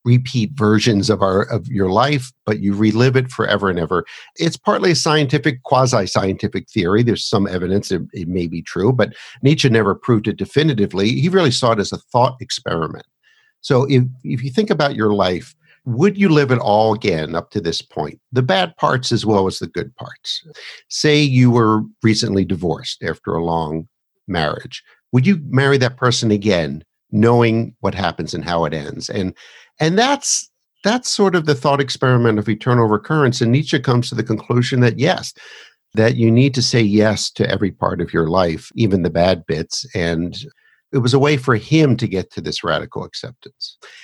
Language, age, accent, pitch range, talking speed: English, 50-69, American, 100-140 Hz, 190 wpm